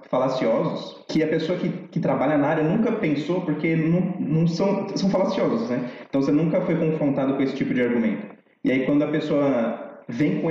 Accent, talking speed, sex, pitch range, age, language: Brazilian, 200 wpm, male, 135-195 Hz, 20-39, Portuguese